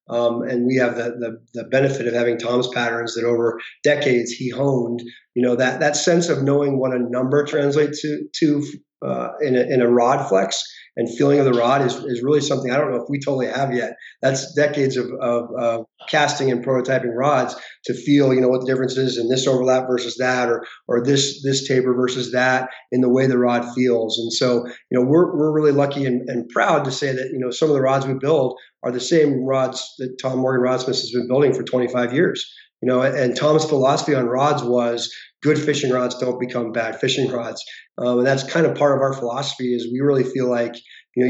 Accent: American